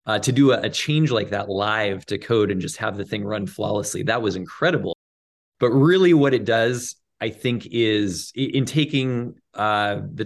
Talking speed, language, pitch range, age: 195 wpm, English, 105-135 Hz, 20-39